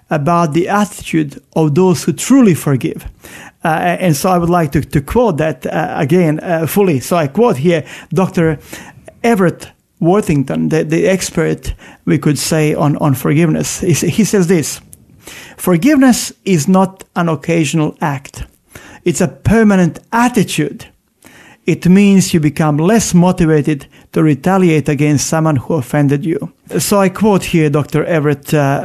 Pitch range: 150-185 Hz